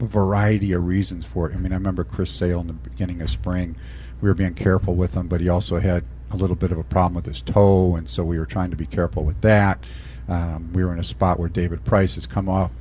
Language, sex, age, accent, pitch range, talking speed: English, male, 50-69, American, 85-105 Hz, 265 wpm